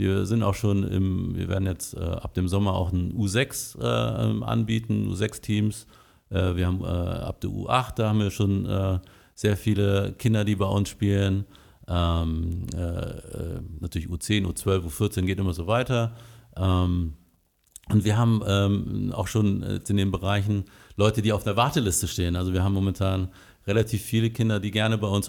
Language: German